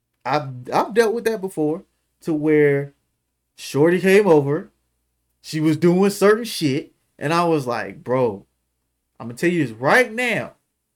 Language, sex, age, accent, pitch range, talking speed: English, male, 20-39, American, 140-195 Hz, 160 wpm